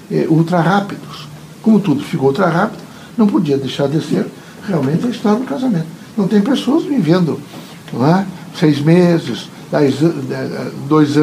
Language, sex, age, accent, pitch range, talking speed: Portuguese, male, 60-79, Brazilian, 160-225 Hz, 140 wpm